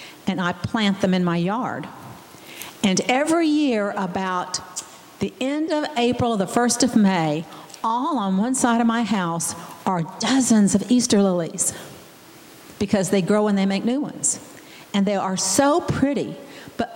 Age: 50-69